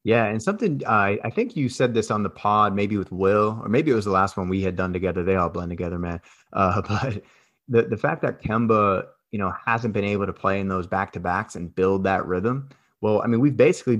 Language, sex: English, male